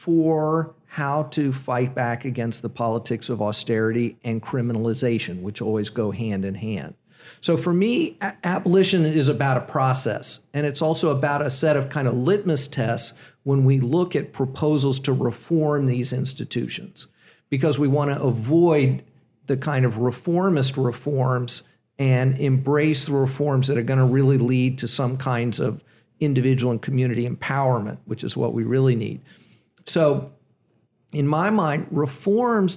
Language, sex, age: English, male, 50-69